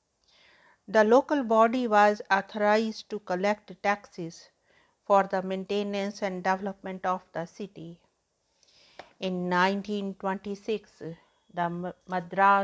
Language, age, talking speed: English, 50-69, 85 wpm